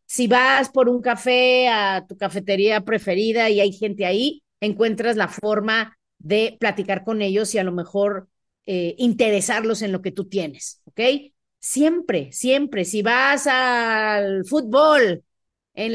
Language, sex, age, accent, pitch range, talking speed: Spanish, female, 40-59, Mexican, 195-255 Hz, 145 wpm